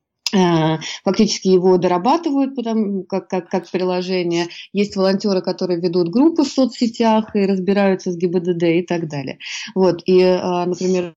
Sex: female